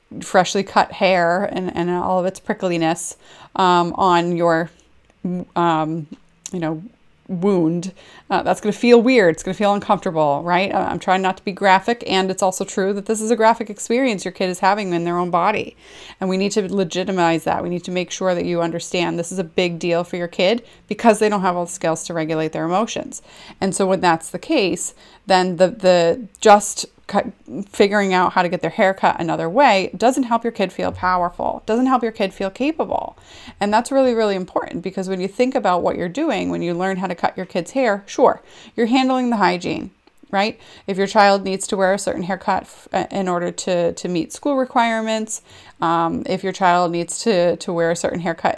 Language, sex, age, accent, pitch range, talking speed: English, female, 30-49, American, 175-210 Hz, 215 wpm